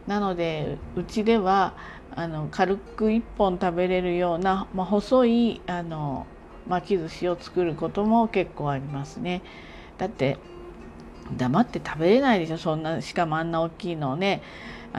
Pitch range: 165-205 Hz